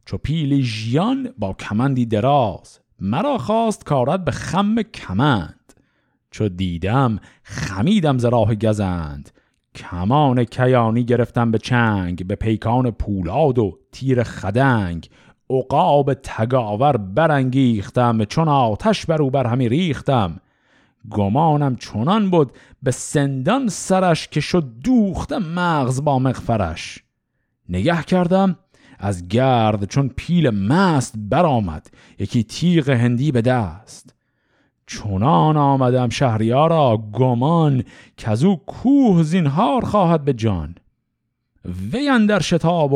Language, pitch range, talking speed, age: Persian, 110-150 Hz, 110 wpm, 50-69